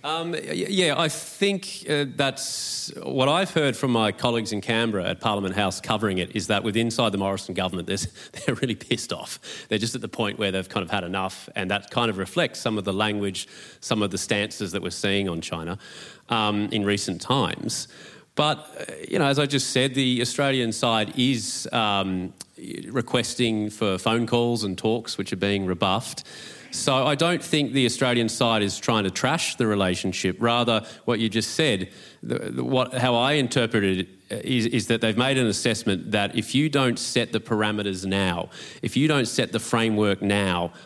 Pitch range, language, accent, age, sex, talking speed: 100-125 Hz, English, Australian, 30-49, male, 195 wpm